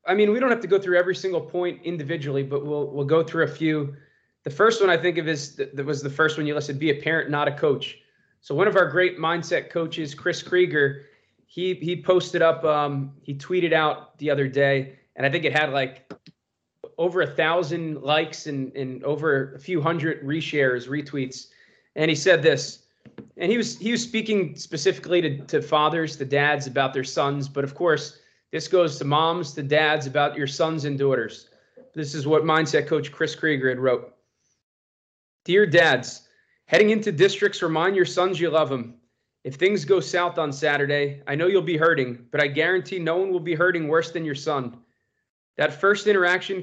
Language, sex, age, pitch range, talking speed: English, male, 20-39, 145-175 Hz, 200 wpm